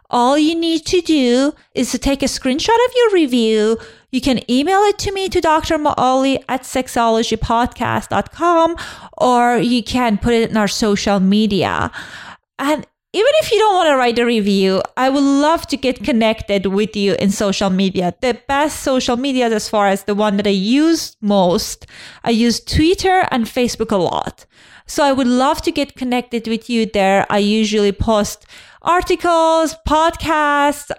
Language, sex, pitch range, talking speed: English, female, 210-300 Hz, 170 wpm